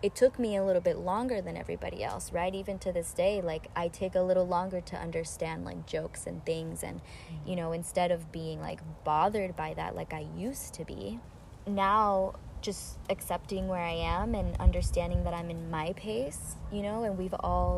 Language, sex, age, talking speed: English, female, 20-39, 205 wpm